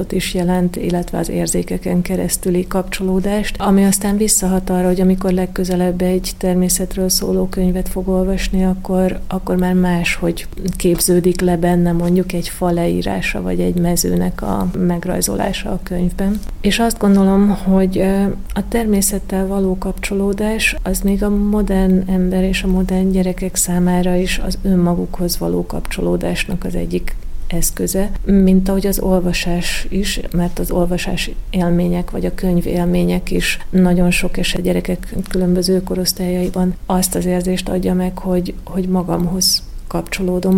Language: Hungarian